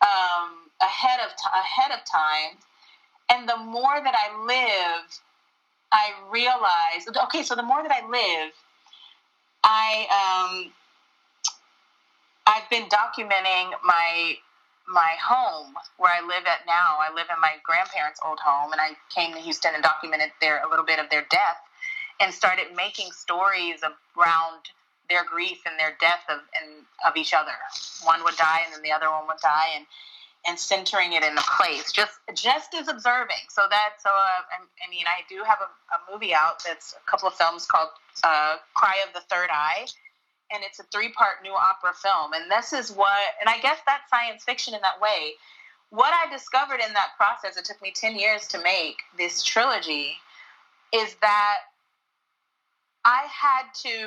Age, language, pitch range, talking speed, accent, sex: 30-49, English, 165-235 Hz, 175 wpm, American, female